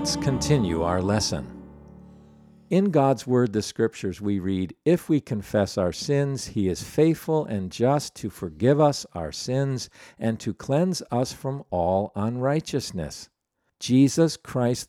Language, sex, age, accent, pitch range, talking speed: English, male, 50-69, American, 100-140 Hz, 140 wpm